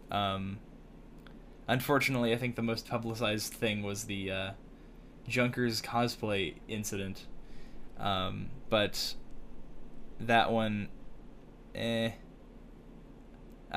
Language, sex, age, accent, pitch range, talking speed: English, male, 10-29, American, 100-115 Hz, 85 wpm